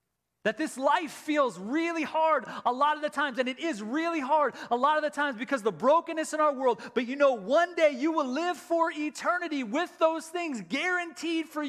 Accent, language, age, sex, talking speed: American, English, 30-49, male, 220 wpm